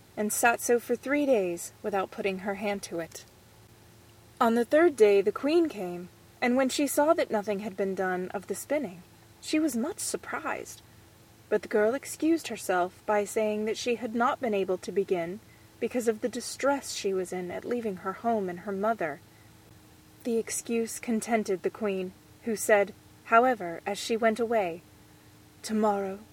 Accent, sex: American, female